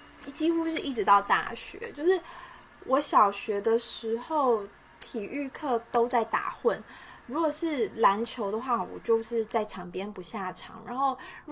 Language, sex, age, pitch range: Chinese, female, 20-39, 190-250 Hz